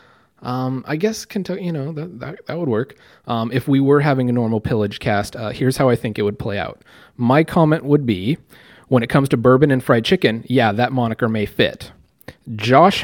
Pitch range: 115-145 Hz